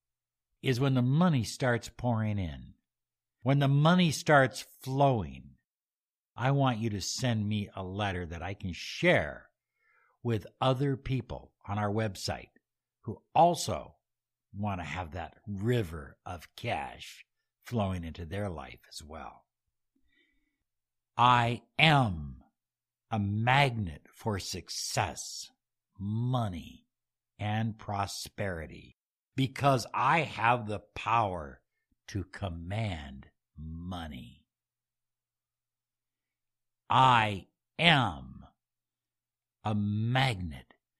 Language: English